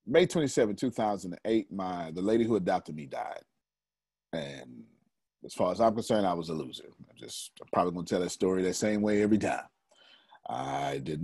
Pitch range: 75-105 Hz